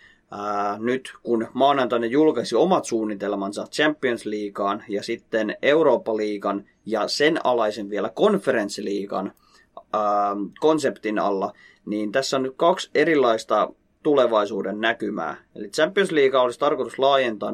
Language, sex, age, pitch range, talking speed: Finnish, male, 30-49, 105-140 Hz, 105 wpm